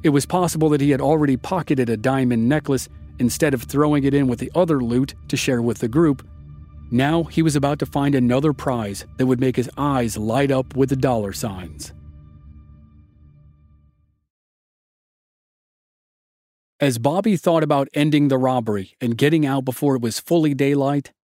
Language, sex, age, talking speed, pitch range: English, male, 40-59, 165 wpm, 120-155 Hz